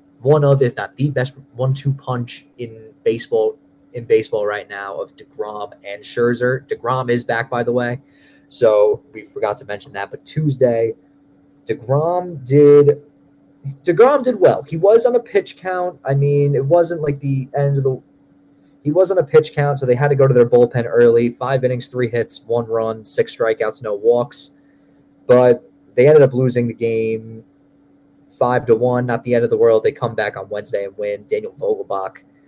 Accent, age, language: American, 20-39, English